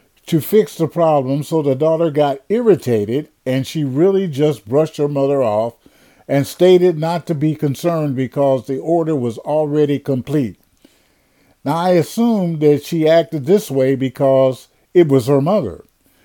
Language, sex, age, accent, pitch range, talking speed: English, male, 50-69, American, 135-180 Hz, 155 wpm